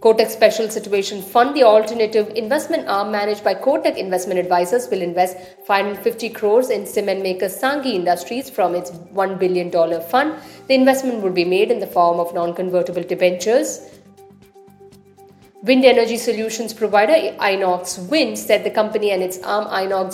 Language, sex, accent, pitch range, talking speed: English, female, Indian, 185-230 Hz, 150 wpm